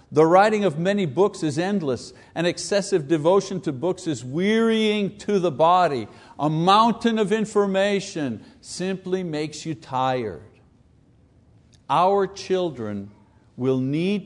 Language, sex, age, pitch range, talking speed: English, male, 60-79, 130-195 Hz, 120 wpm